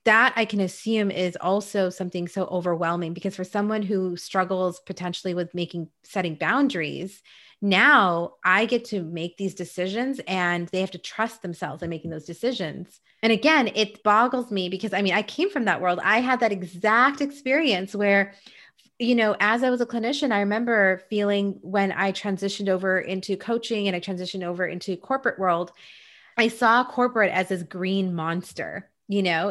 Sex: female